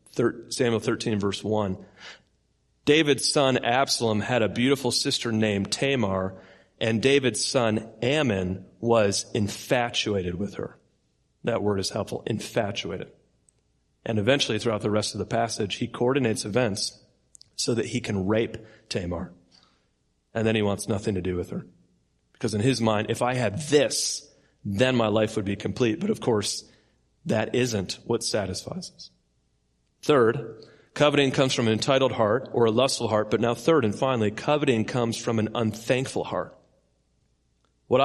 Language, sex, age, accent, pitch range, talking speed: English, male, 40-59, American, 100-125 Hz, 155 wpm